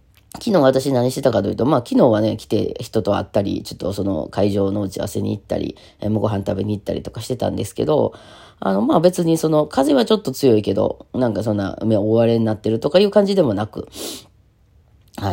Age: 20-39